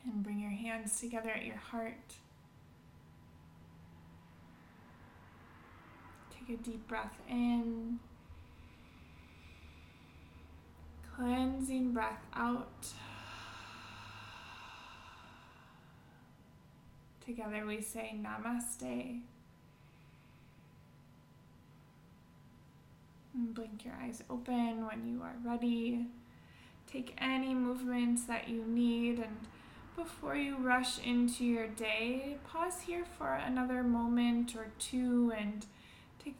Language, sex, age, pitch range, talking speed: English, female, 20-39, 210-245 Hz, 85 wpm